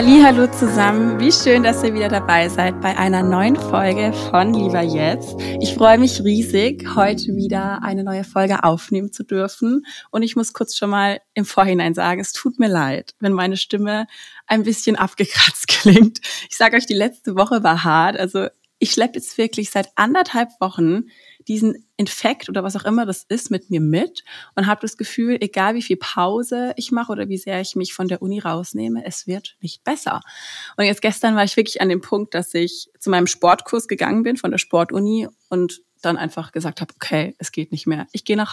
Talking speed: 200 wpm